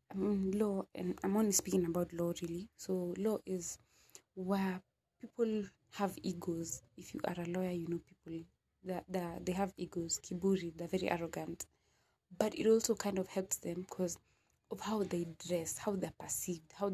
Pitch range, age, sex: 180-220 Hz, 20-39, female